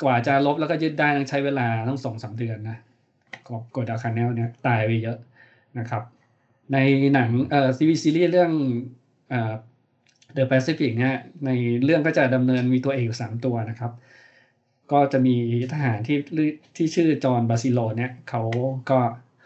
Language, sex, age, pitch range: Thai, male, 20-39, 120-145 Hz